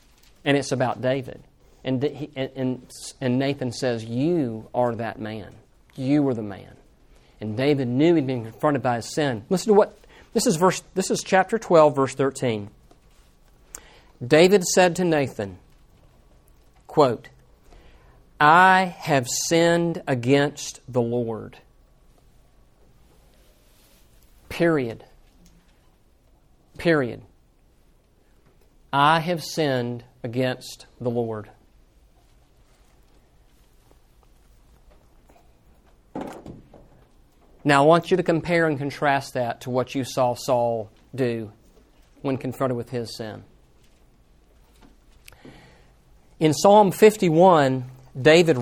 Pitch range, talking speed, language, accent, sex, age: 125-155 Hz, 105 wpm, English, American, male, 50-69